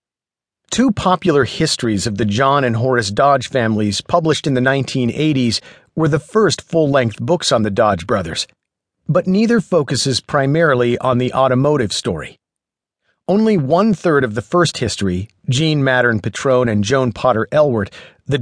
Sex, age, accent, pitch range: male, 50-69, American, 115-160 Hz